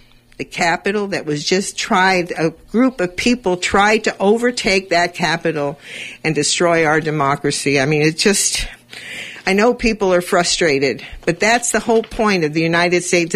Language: English